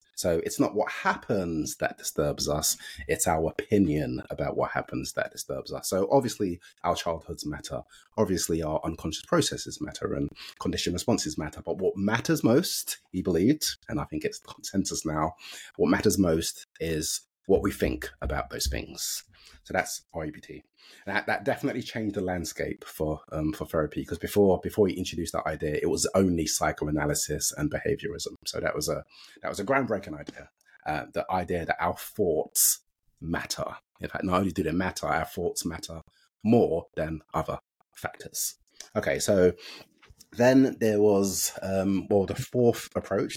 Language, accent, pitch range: English, British, 90-115 Hz